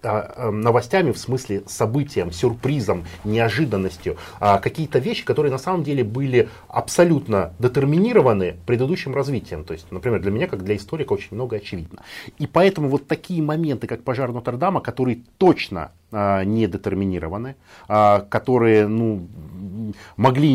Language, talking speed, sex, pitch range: Russian, 125 wpm, male, 100-135 Hz